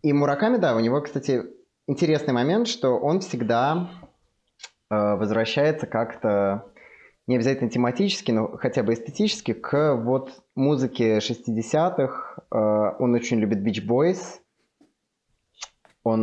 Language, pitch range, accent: Ukrainian, 100-125 Hz, native